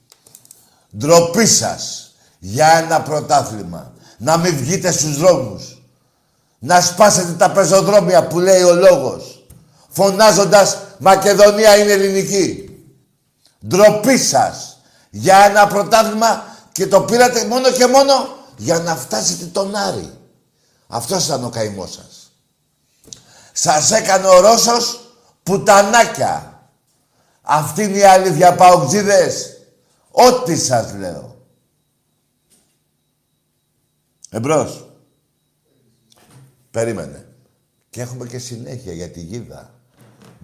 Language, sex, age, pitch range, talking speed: Greek, male, 50-69, 125-205 Hz, 100 wpm